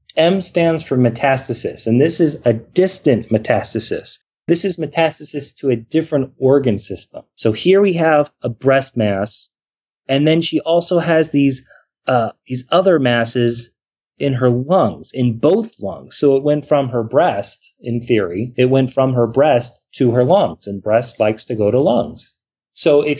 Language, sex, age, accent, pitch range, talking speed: English, male, 30-49, American, 120-150 Hz, 170 wpm